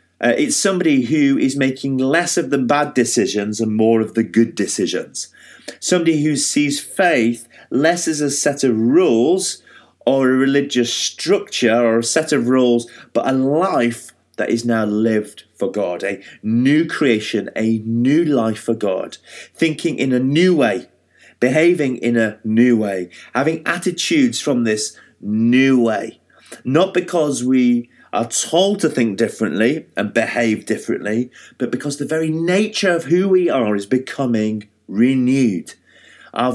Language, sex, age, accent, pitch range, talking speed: English, male, 30-49, British, 115-170 Hz, 155 wpm